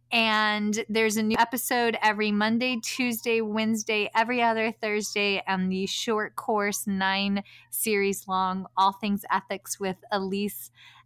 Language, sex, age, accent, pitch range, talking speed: English, female, 20-39, American, 195-240 Hz, 130 wpm